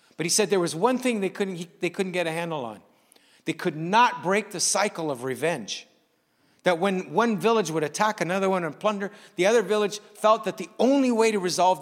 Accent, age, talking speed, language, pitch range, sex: American, 60-79, 220 wpm, English, 130-200 Hz, male